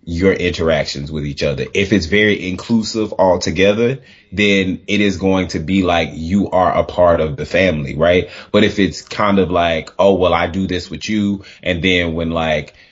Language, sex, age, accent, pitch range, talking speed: English, male, 20-39, American, 85-100 Hz, 195 wpm